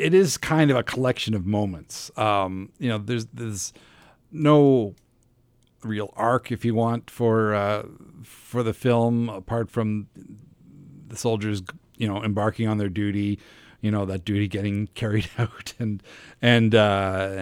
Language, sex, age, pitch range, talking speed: English, male, 50-69, 100-120 Hz, 150 wpm